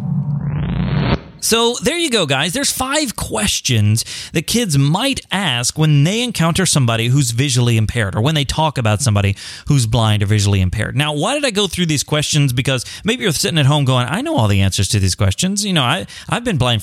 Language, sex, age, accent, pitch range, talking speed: English, male, 30-49, American, 120-175 Hz, 205 wpm